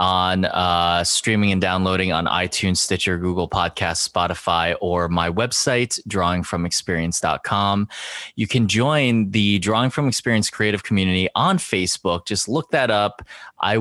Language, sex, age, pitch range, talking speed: English, male, 20-39, 95-115 Hz, 135 wpm